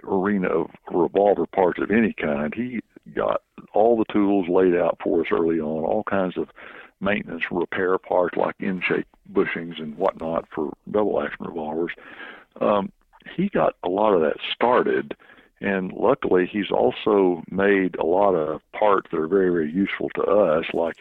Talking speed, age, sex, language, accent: 165 wpm, 60-79, male, English, American